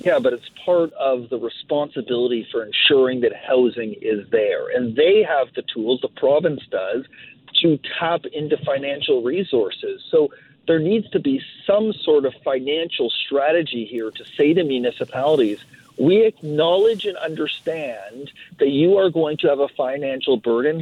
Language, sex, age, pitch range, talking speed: English, male, 40-59, 145-210 Hz, 155 wpm